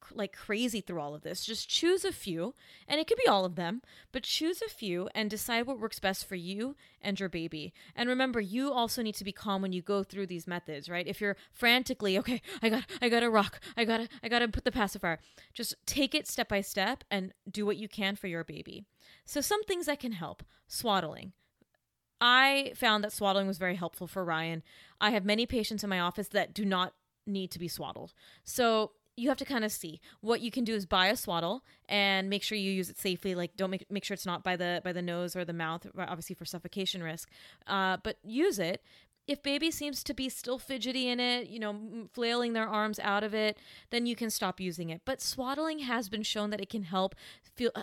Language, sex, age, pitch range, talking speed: English, female, 20-39, 185-240 Hz, 235 wpm